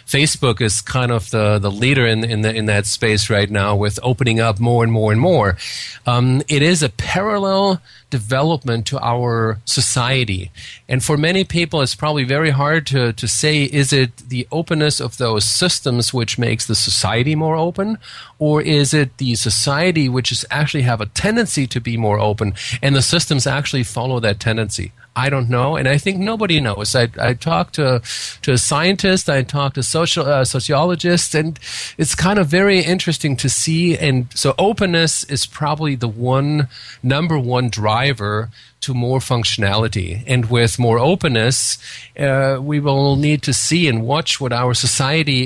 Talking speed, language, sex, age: 175 wpm, English, male, 40-59